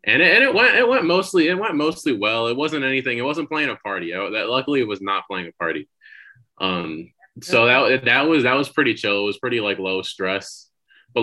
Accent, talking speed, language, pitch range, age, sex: American, 230 wpm, English, 95-120 Hz, 20-39, male